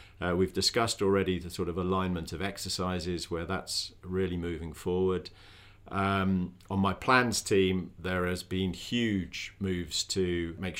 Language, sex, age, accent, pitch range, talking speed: English, male, 50-69, British, 85-100 Hz, 150 wpm